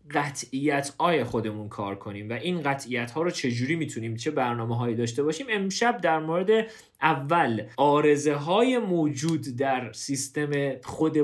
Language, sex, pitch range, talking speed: Persian, male, 120-170 Hz, 140 wpm